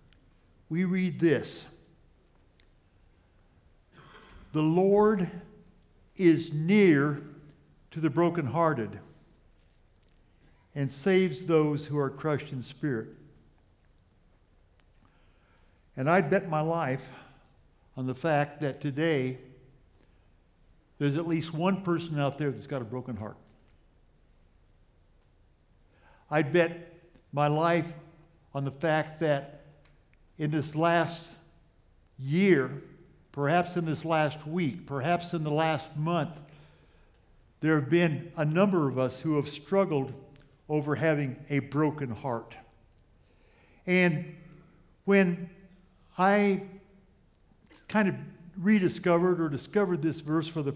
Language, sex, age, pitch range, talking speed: English, male, 60-79, 115-165 Hz, 105 wpm